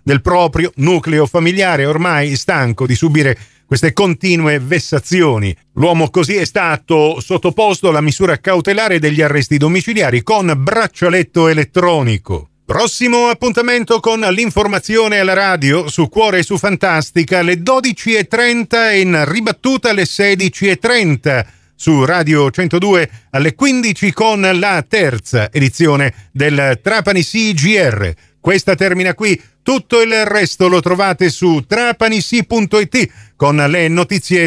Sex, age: male, 50-69